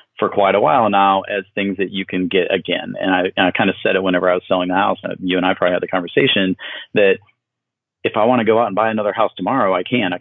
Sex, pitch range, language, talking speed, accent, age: male, 90-110 Hz, English, 280 wpm, American, 40-59